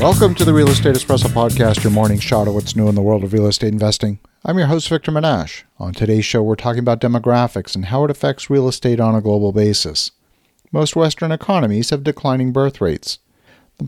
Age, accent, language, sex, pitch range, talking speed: 50-69, American, English, male, 110-140 Hz, 215 wpm